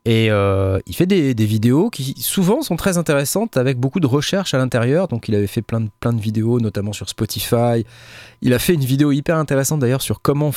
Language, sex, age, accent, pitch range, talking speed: French, male, 20-39, French, 115-155 Hz, 225 wpm